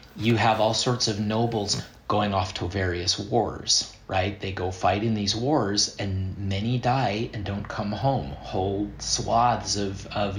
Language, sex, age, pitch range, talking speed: English, male, 30-49, 100-115 Hz, 170 wpm